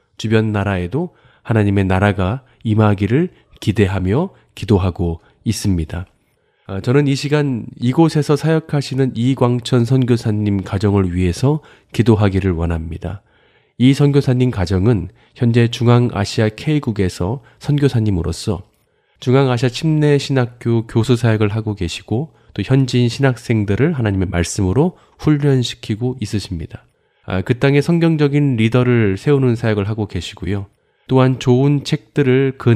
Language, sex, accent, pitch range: Korean, male, native, 100-135 Hz